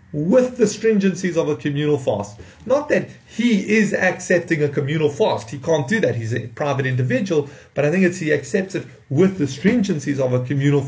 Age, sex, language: 30-49, male, English